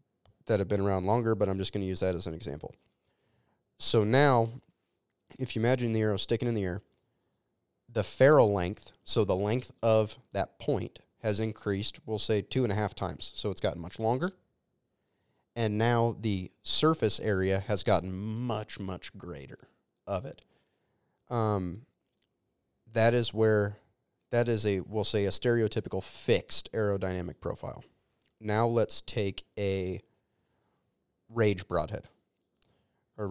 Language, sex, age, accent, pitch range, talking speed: English, male, 20-39, American, 95-115 Hz, 150 wpm